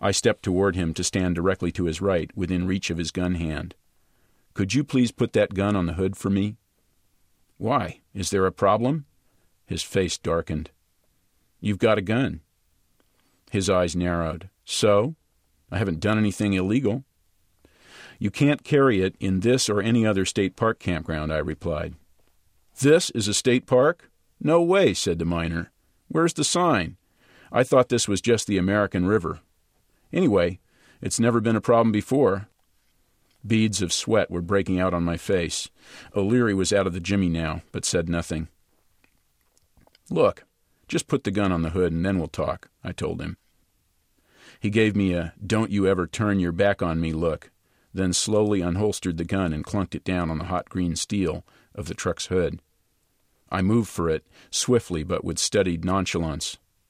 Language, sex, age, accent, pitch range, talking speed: English, male, 50-69, American, 85-105 Hz, 165 wpm